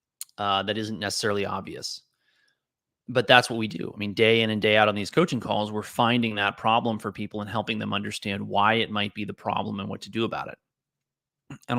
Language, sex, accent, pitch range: English, male, American, 105-115 Hz